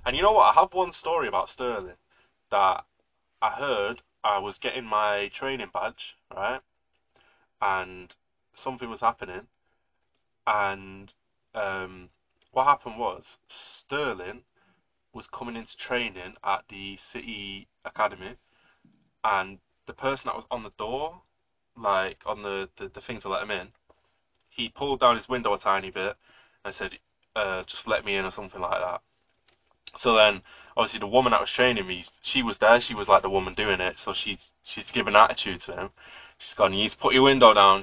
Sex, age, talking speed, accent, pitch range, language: male, 20-39, 175 wpm, British, 95-120 Hz, English